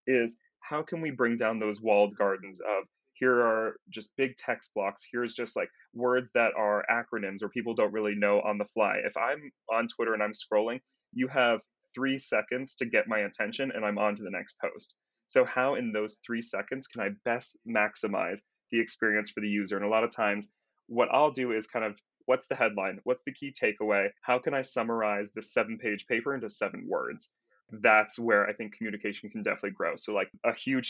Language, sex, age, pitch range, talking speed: English, male, 20-39, 105-130 Hz, 210 wpm